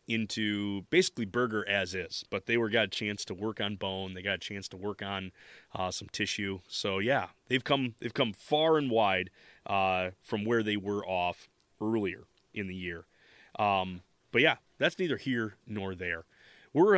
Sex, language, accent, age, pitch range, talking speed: male, English, American, 30-49, 100-125 Hz, 185 wpm